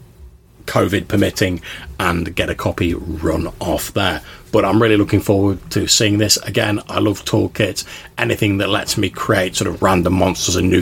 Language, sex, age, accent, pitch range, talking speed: English, male, 40-59, British, 95-115 Hz, 175 wpm